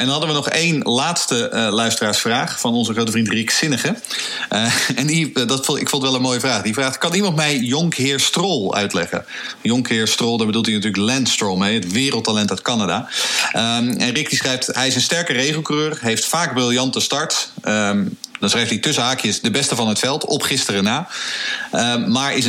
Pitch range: 110-145 Hz